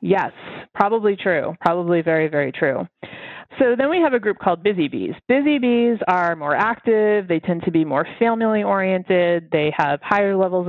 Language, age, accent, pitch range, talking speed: English, 30-49, American, 160-210 Hz, 180 wpm